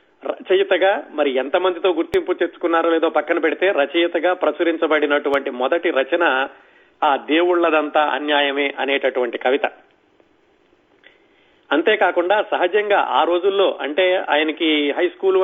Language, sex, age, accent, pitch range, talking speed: Telugu, male, 40-59, native, 150-180 Hz, 95 wpm